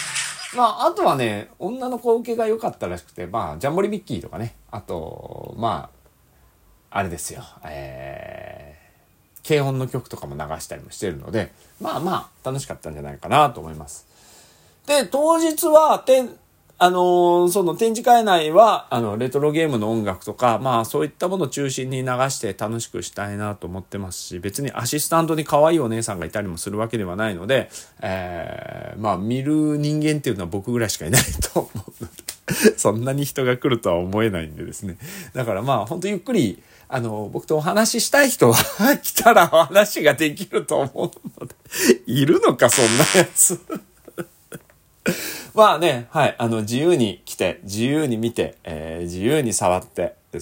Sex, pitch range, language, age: male, 95-155 Hz, Japanese, 40-59